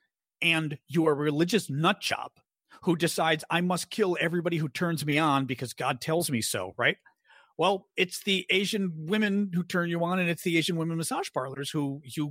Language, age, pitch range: English, 40-59, 150-195 Hz